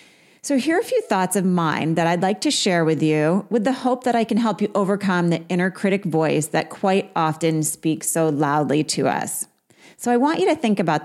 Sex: female